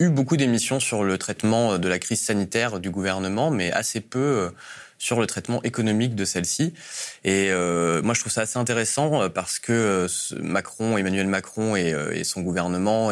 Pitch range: 90-115 Hz